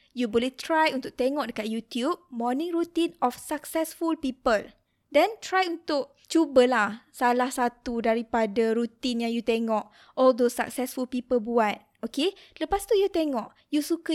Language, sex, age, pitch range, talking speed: Malay, female, 20-39, 235-290 Hz, 150 wpm